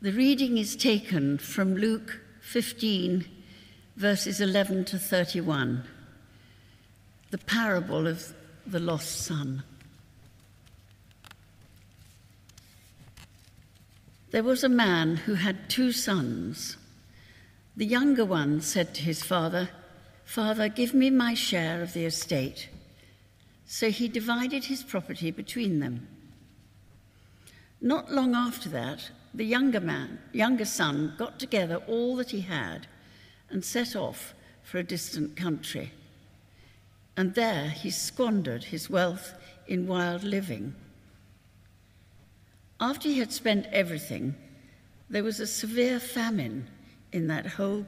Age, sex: 60-79, female